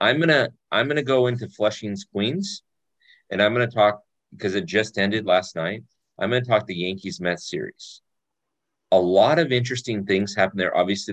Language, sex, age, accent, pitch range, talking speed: English, male, 40-59, American, 90-110 Hz, 180 wpm